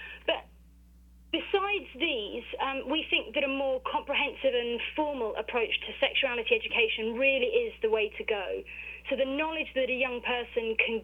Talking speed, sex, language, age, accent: 165 wpm, female, English, 30-49, British